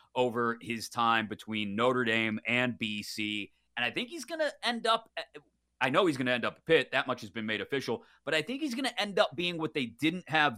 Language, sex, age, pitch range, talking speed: English, male, 30-49, 110-150 Hz, 250 wpm